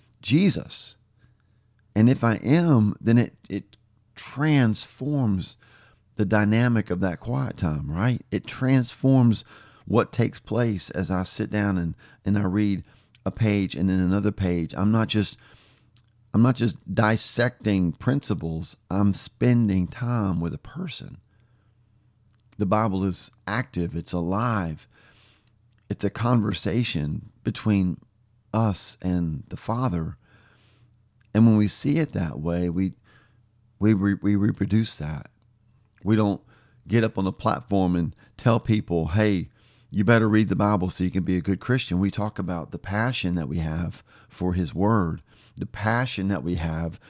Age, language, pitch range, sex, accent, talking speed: 40-59, English, 95-115 Hz, male, American, 145 wpm